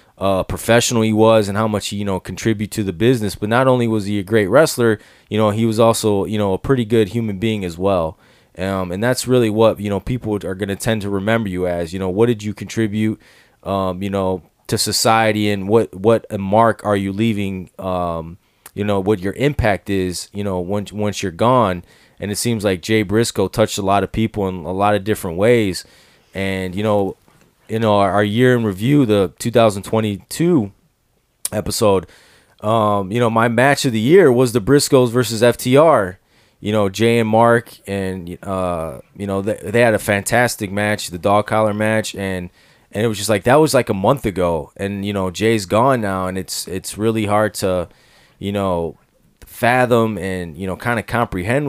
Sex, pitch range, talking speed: male, 95-115 Hz, 205 wpm